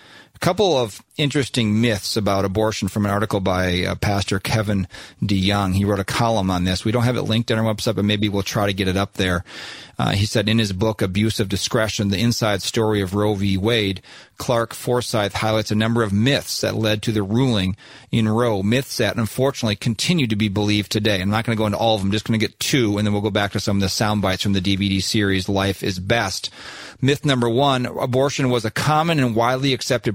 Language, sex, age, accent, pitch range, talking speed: English, male, 40-59, American, 105-130 Hz, 235 wpm